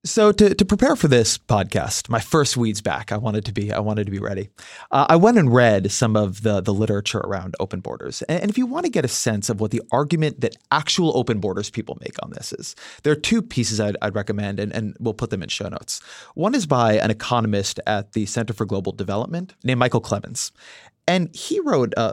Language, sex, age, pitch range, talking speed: English, male, 30-49, 105-140 Hz, 235 wpm